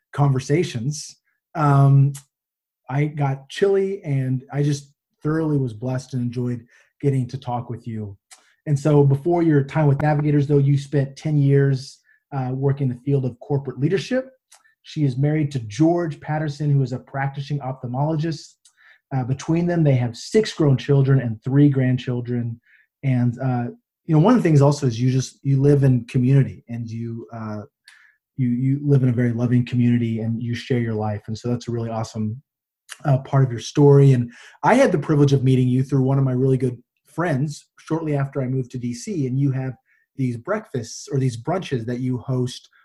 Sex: male